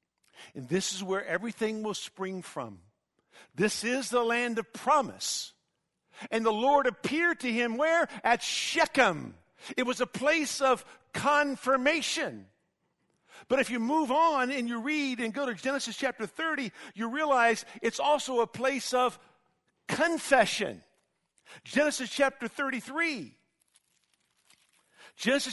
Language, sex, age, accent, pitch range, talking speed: English, male, 50-69, American, 225-280 Hz, 130 wpm